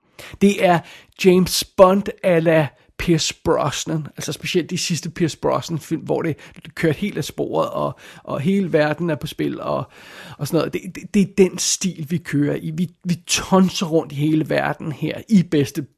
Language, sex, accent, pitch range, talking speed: Danish, male, native, 155-180 Hz, 190 wpm